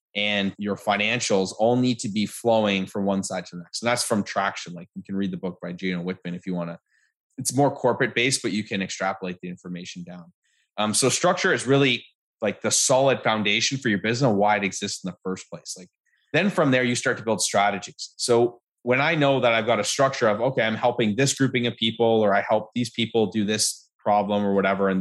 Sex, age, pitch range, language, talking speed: male, 20-39, 100-125 Hz, English, 240 wpm